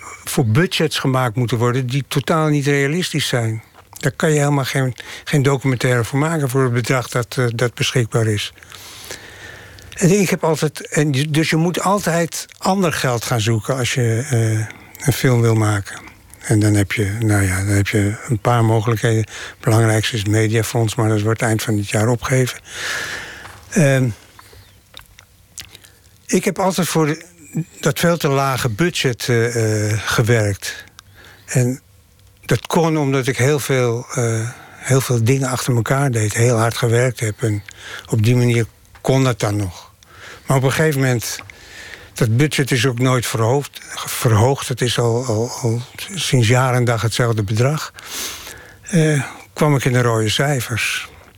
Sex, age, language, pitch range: male, 60-79, Dutch, 110-140 Hz